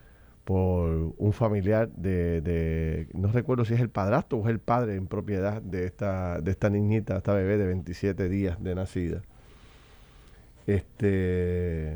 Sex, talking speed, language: male, 150 wpm, Spanish